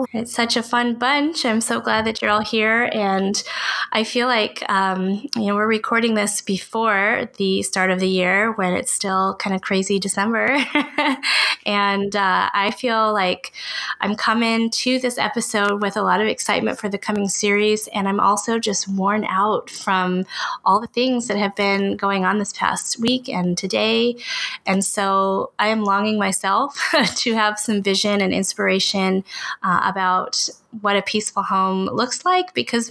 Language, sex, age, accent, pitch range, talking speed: English, female, 20-39, American, 195-235 Hz, 170 wpm